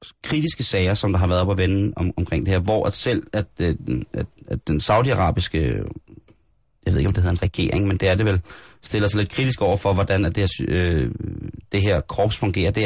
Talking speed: 235 wpm